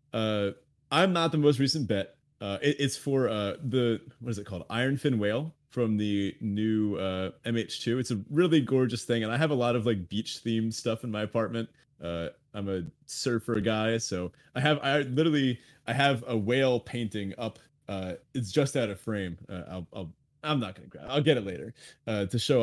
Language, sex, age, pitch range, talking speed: English, male, 30-49, 115-155 Hz, 205 wpm